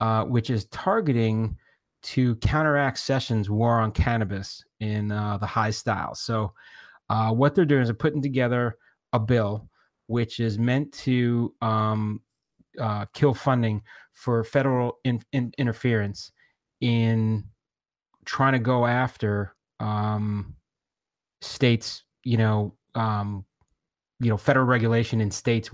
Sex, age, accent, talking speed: male, 30-49, American, 120 wpm